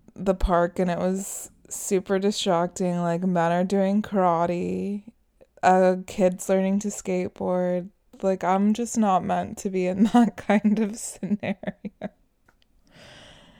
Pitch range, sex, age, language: 185-210 Hz, female, 20-39, English